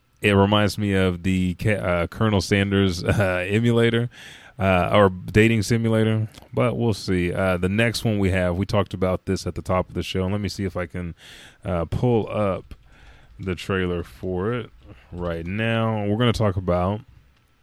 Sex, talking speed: male, 180 wpm